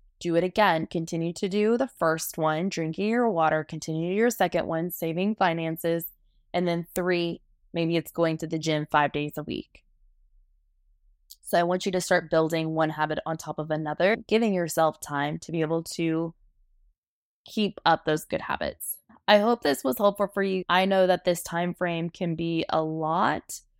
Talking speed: 185 wpm